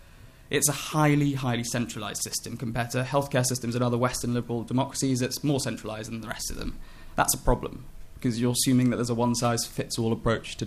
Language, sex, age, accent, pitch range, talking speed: English, male, 20-39, British, 115-135 Hz, 195 wpm